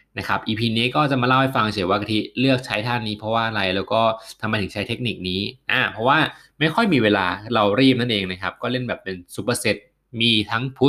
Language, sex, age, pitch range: Thai, male, 20-39, 95-120 Hz